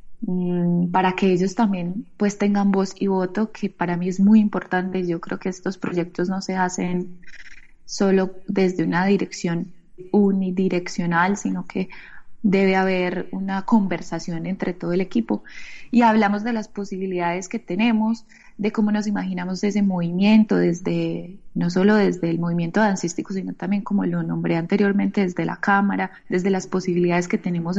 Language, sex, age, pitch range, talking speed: Spanish, female, 20-39, 180-205 Hz, 155 wpm